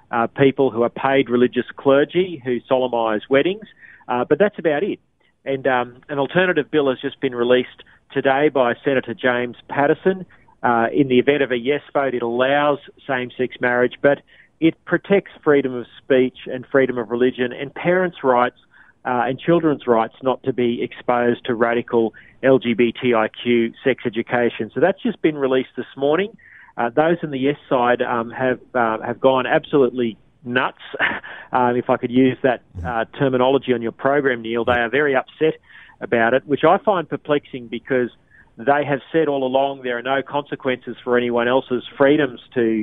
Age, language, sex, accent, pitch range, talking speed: 40-59, English, male, Australian, 120-140 Hz, 175 wpm